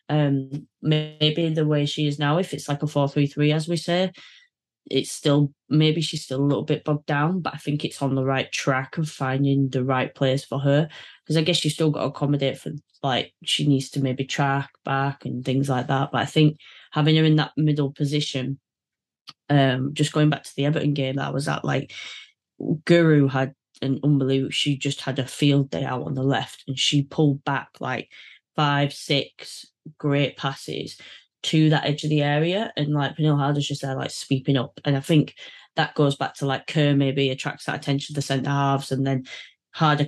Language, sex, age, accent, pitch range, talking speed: English, female, 20-39, British, 135-150 Hz, 210 wpm